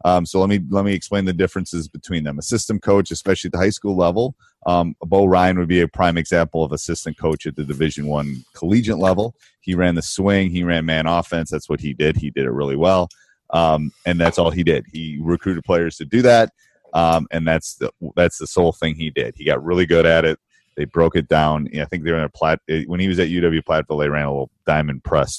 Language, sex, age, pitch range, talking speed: English, male, 30-49, 80-100 Hz, 250 wpm